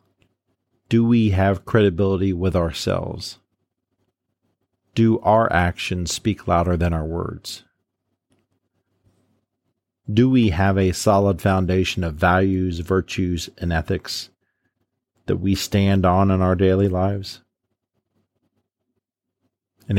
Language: English